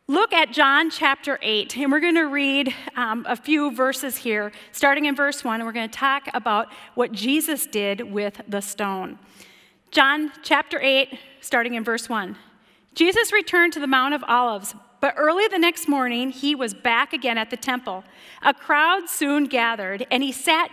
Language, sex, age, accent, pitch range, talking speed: English, female, 40-59, American, 240-320 Hz, 185 wpm